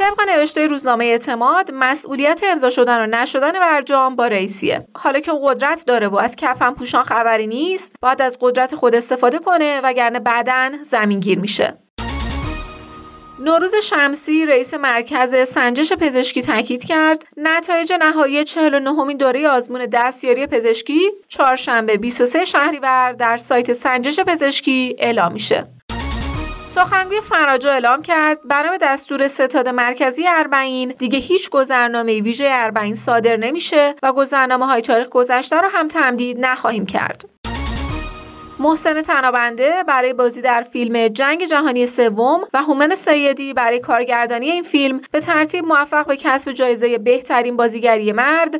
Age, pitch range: 30-49, 245-305 Hz